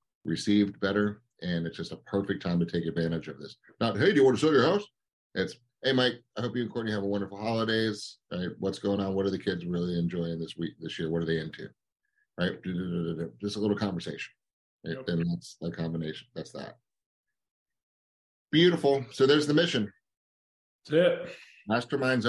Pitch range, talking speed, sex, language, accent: 85-105 Hz, 185 wpm, male, English, American